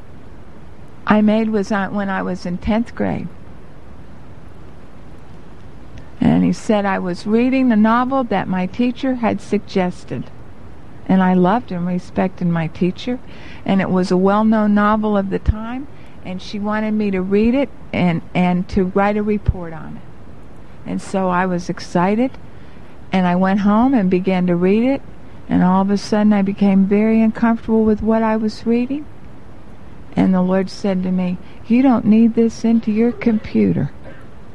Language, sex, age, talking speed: English, female, 60-79, 165 wpm